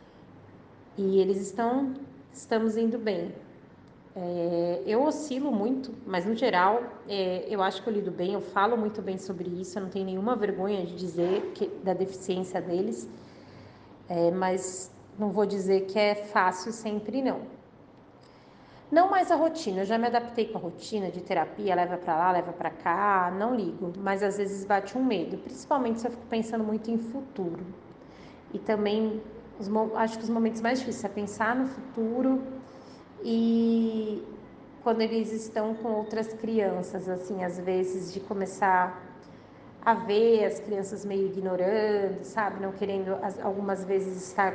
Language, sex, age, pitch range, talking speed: Portuguese, female, 30-49, 190-225 Hz, 160 wpm